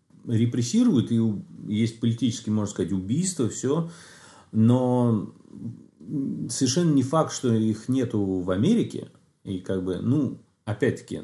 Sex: male